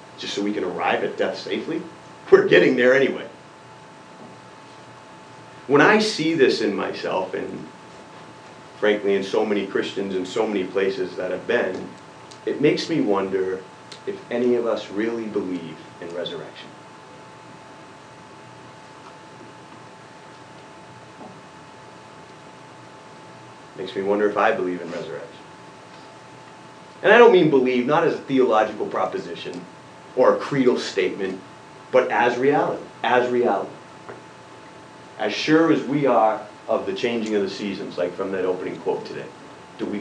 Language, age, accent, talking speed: English, 30-49, American, 135 wpm